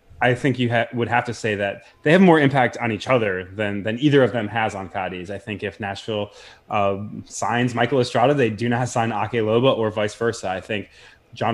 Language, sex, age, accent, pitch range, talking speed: English, male, 20-39, American, 105-120 Hz, 225 wpm